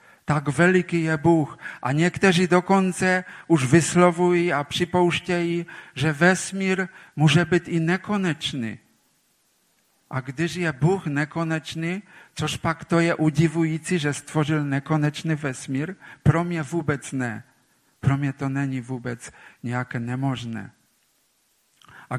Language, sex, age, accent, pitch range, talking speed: Czech, male, 50-69, Polish, 145-180 Hz, 115 wpm